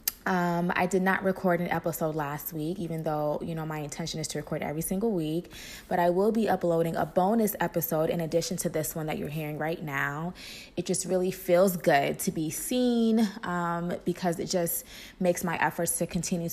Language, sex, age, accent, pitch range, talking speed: English, female, 20-39, American, 160-195 Hz, 205 wpm